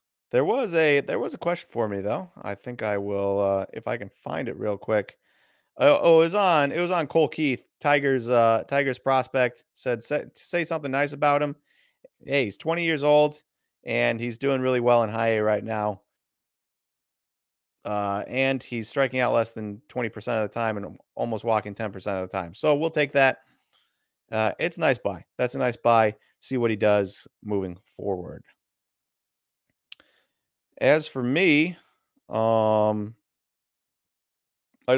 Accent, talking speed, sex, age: American, 175 wpm, male, 30-49